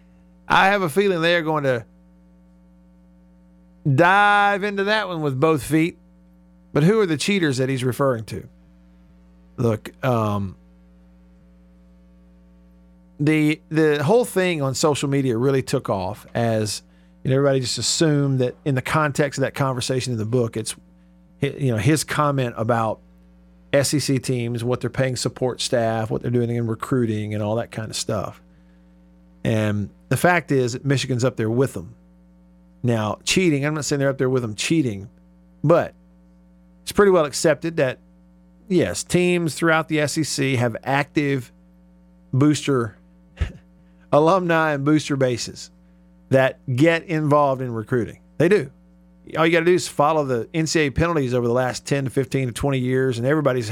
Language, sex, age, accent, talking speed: English, male, 50-69, American, 160 wpm